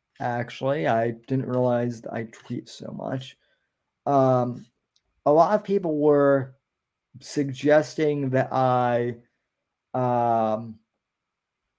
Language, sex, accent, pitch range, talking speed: English, male, American, 130-155 Hz, 90 wpm